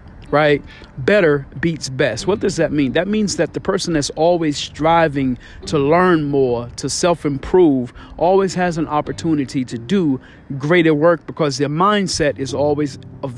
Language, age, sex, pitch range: English, 40-59, male, 135-170 Hz